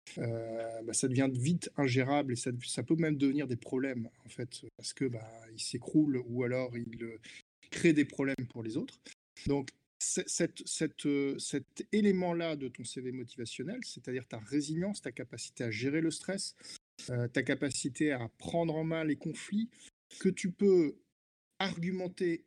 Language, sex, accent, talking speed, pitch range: French, male, French, 170 wpm, 130-165 Hz